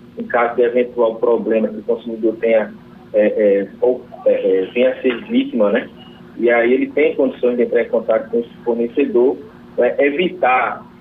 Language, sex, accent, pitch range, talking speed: Portuguese, male, Brazilian, 115-140 Hz, 170 wpm